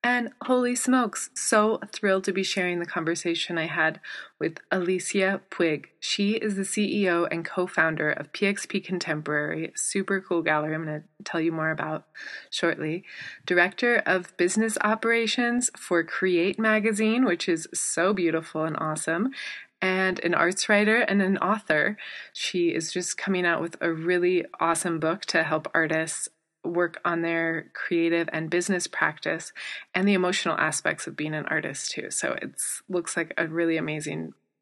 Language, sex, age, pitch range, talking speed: English, female, 20-39, 165-205 Hz, 160 wpm